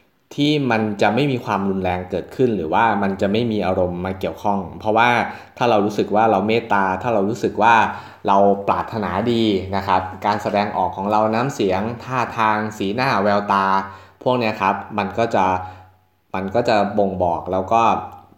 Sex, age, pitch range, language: male, 20-39, 95-115 Hz, Thai